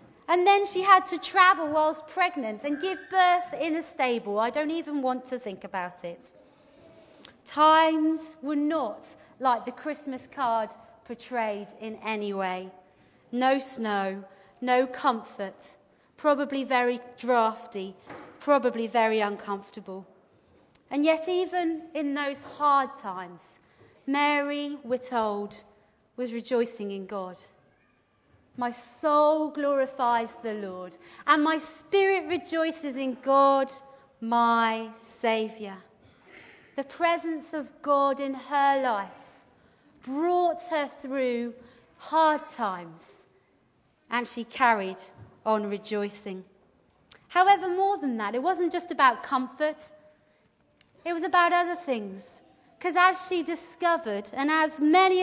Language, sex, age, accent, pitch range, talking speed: English, female, 30-49, British, 220-315 Hz, 115 wpm